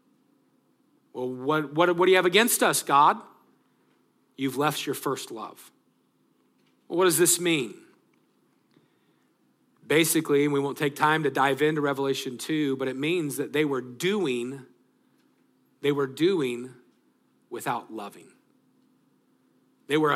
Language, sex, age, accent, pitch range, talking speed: English, male, 40-59, American, 135-180 Hz, 135 wpm